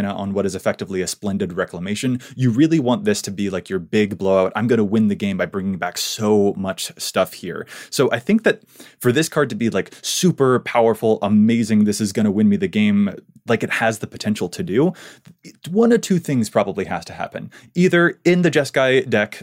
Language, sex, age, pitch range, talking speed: English, male, 20-39, 100-135 Hz, 220 wpm